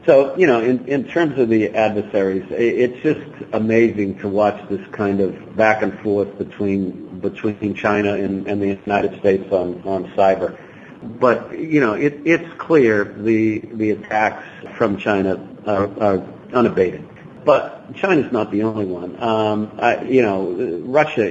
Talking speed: 160 wpm